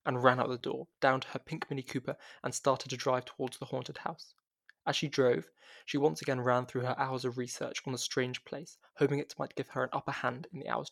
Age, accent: 20-39, British